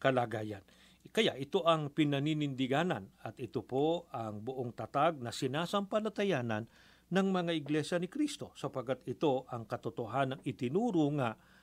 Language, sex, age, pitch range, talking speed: Filipino, male, 50-69, 120-160 Hz, 120 wpm